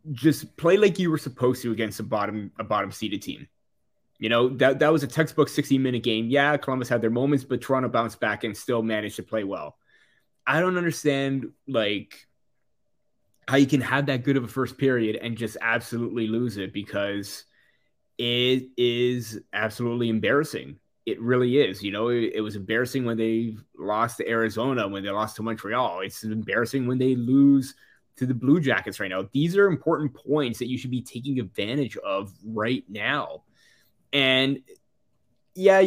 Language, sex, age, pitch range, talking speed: English, male, 20-39, 110-135 Hz, 180 wpm